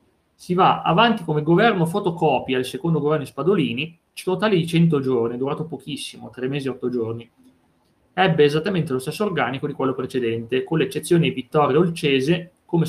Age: 30-49